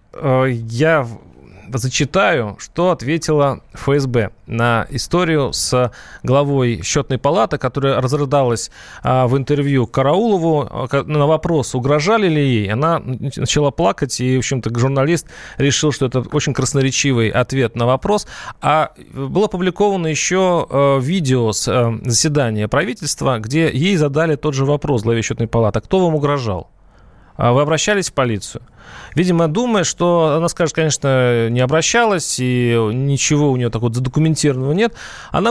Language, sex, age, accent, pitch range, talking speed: Russian, male, 30-49, native, 120-160 Hz, 130 wpm